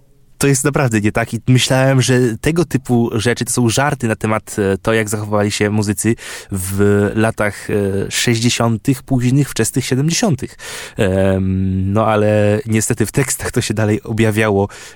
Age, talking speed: 20-39, 145 wpm